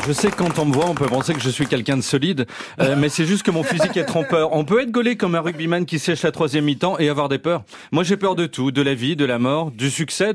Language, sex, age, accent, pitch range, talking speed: French, male, 40-59, French, 150-205 Hz, 315 wpm